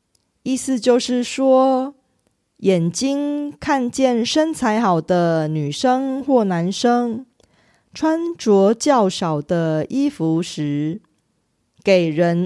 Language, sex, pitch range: Korean, female, 170-255 Hz